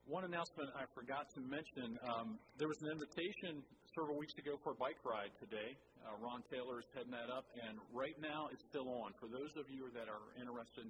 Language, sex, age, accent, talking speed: English, male, 50-69, American, 220 wpm